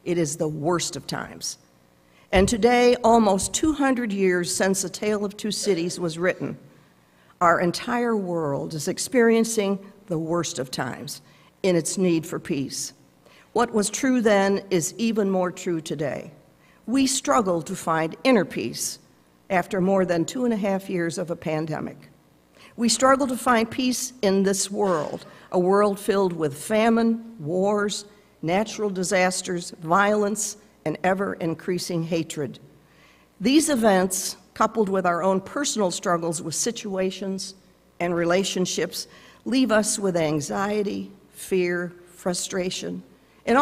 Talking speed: 135 wpm